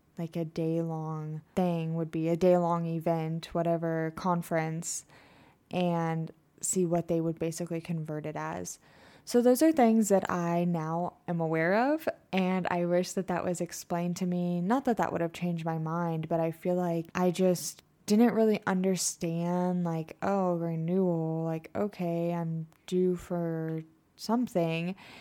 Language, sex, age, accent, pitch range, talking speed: English, female, 20-39, American, 165-190 Hz, 155 wpm